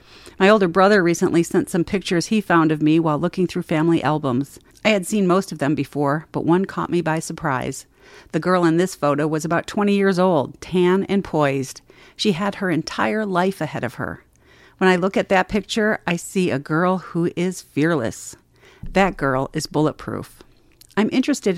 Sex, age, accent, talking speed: female, 50-69, American, 190 wpm